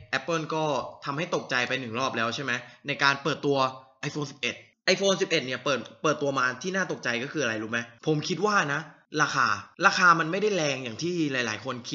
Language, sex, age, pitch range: Thai, male, 20-39, 120-155 Hz